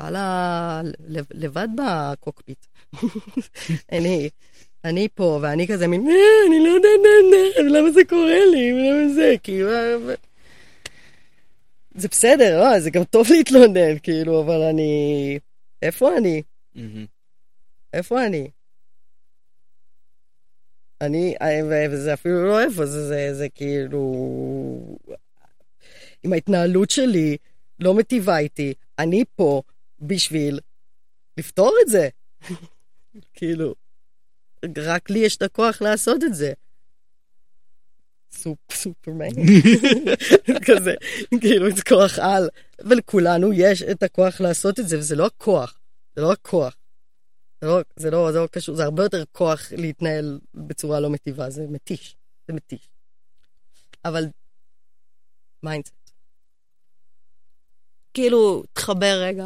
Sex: female